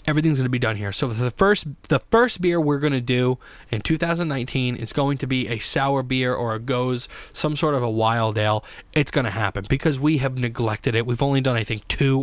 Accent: American